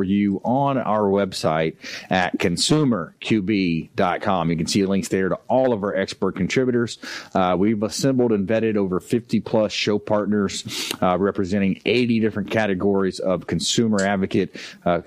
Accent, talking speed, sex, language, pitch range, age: American, 140 wpm, male, English, 95-115 Hz, 30-49